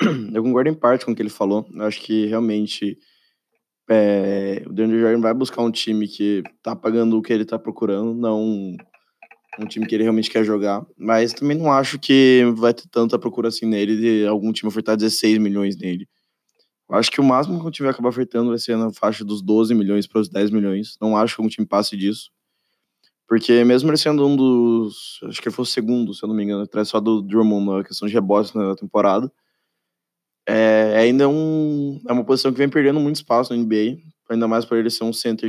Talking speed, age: 220 wpm, 20-39